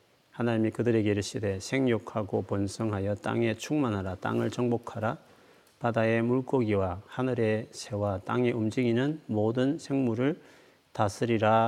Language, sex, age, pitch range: Korean, male, 40-59, 110-130 Hz